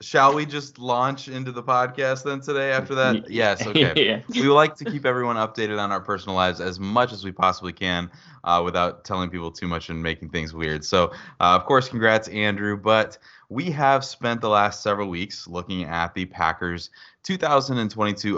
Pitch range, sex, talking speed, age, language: 90-115 Hz, male, 190 wpm, 20-39, English